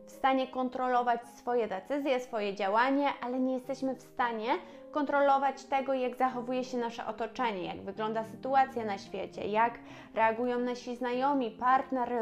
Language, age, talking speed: Polish, 20-39, 140 wpm